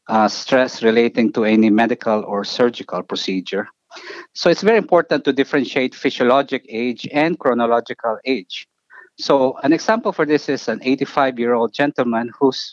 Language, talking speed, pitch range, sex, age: English, 140 wpm, 125-160 Hz, male, 50-69